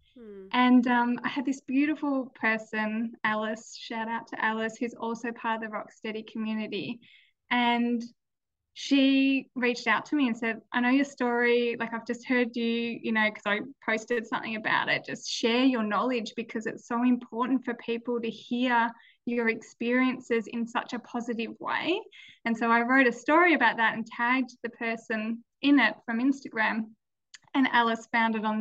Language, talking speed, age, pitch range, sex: English, 175 wpm, 10-29, 225-255 Hz, female